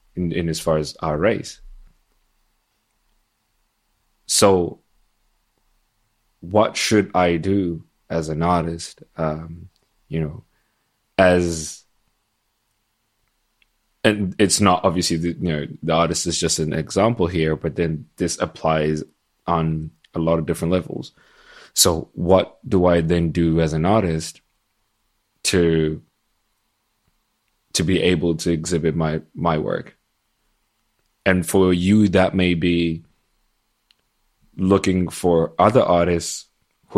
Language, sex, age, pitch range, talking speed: English, male, 20-39, 80-95 Hz, 115 wpm